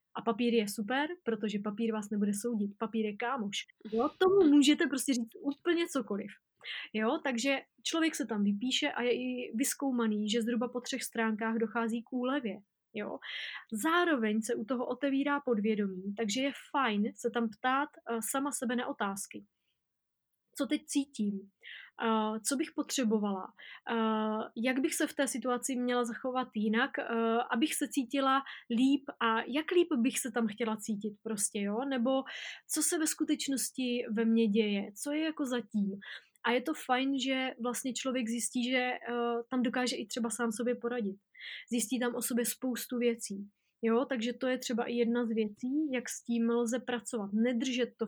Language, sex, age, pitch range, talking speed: Slovak, female, 20-39, 220-260 Hz, 170 wpm